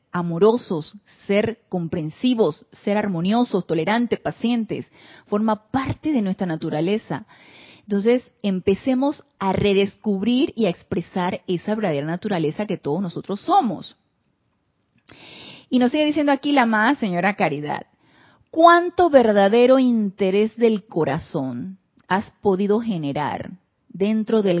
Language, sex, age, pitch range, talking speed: Spanish, female, 30-49, 180-240 Hz, 110 wpm